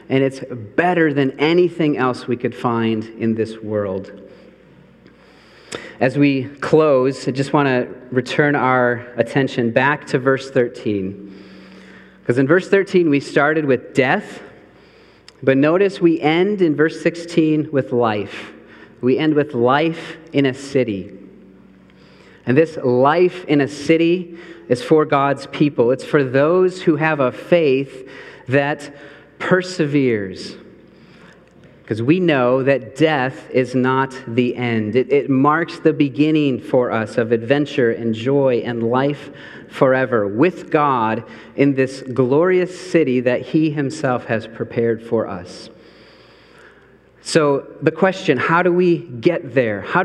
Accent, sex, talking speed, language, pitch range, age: American, male, 135 wpm, English, 120-160 Hz, 40-59